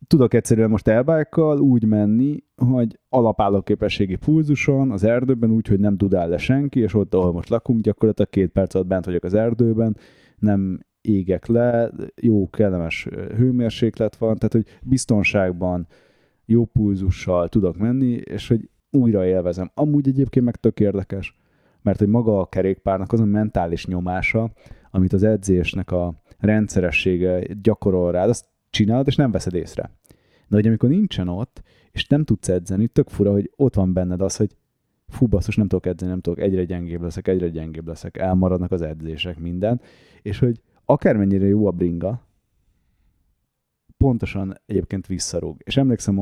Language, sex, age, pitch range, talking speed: Hungarian, male, 30-49, 95-115 Hz, 155 wpm